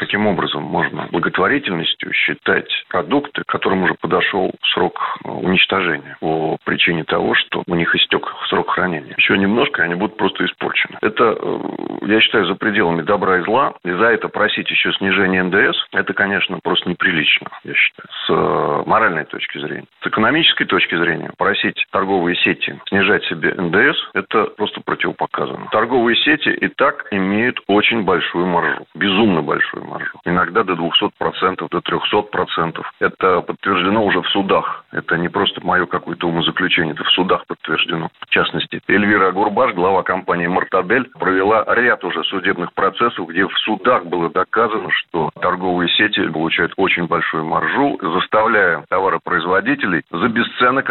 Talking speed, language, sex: 140 wpm, Russian, male